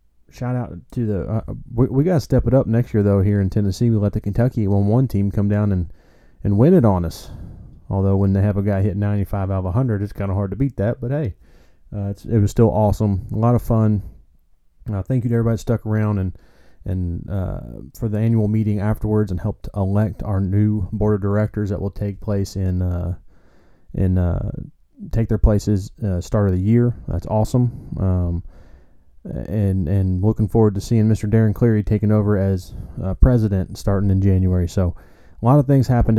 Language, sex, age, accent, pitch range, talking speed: English, male, 30-49, American, 95-110 Hz, 210 wpm